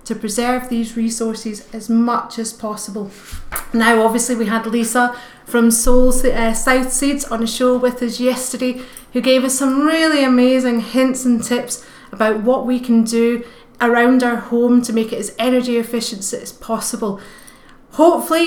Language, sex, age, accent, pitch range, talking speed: English, female, 30-49, British, 225-255 Hz, 160 wpm